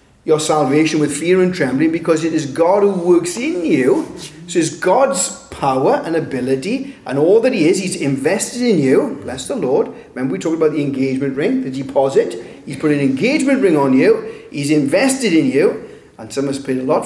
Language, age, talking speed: English, 40-59, 210 wpm